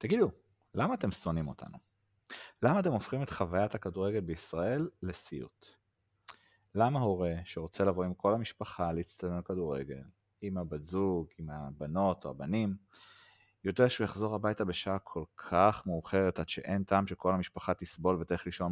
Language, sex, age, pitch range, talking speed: Hebrew, male, 30-49, 85-100 Hz, 145 wpm